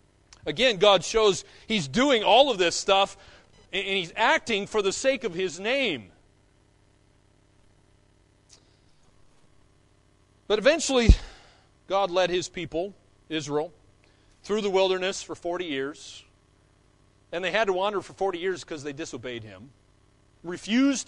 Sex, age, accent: male, 40-59, American